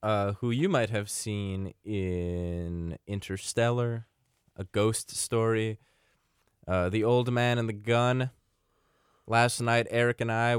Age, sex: 20-39, male